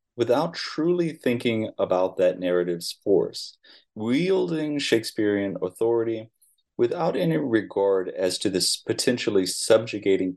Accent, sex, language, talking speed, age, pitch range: American, male, English, 105 wpm, 30-49, 90-105 Hz